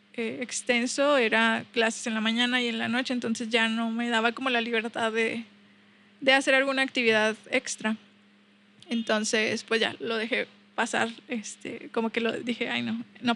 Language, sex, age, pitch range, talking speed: Spanish, female, 20-39, 215-260 Hz, 175 wpm